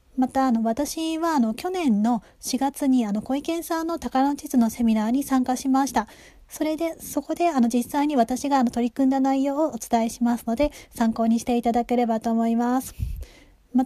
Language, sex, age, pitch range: Japanese, female, 20-39, 230-280 Hz